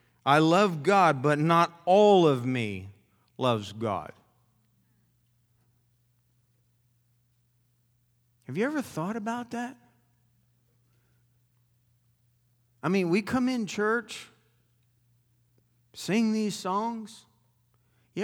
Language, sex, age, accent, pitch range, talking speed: English, male, 50-69, American, 115-165 Hz, 85 wpm